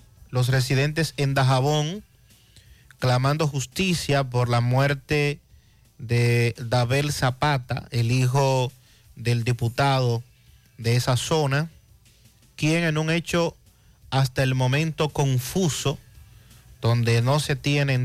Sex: male